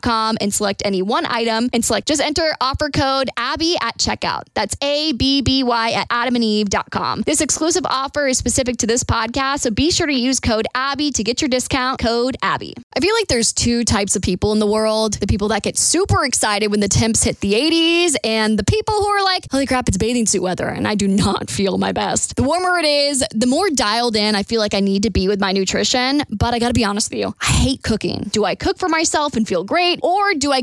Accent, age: American, 10-29